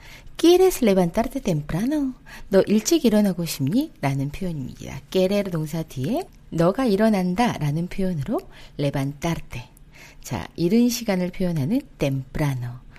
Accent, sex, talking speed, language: Korean, female, 100 wpm, English